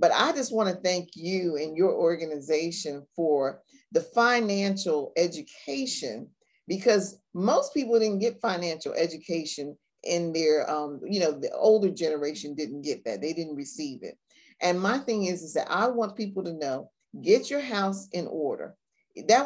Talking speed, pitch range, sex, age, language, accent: 165 wpm, 170-235 Hz, female, 50-69, English, American